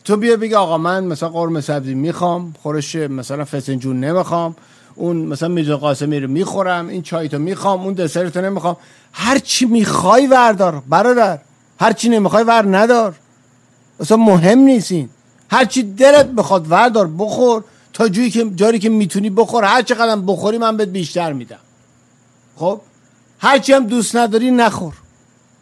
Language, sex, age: Persian, male, 50-69